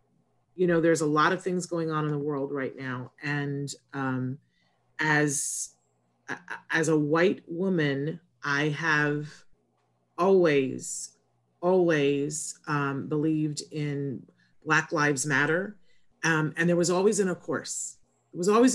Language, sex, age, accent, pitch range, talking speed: English, female, 30-49, American, 135-160 Hz, 135 wpm